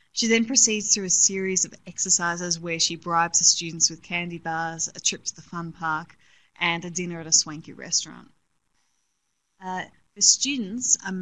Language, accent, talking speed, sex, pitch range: English, Australian, 175 wpm, female, 165-190 Hz